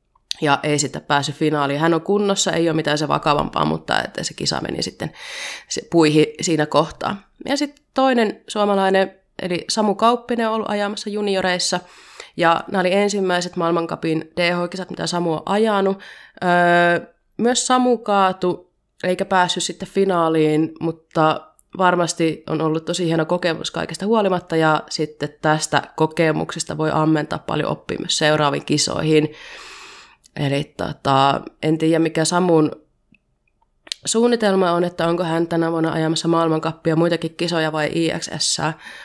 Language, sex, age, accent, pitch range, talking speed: Finnish, female, 20-39, native, 155-190 Hz, 135 wpm